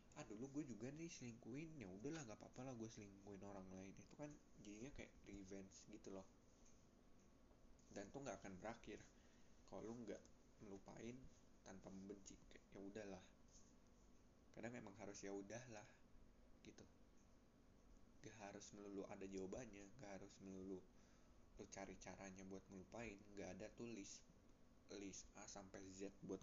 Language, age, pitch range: Indonesian, 20-39, 95-115 Hz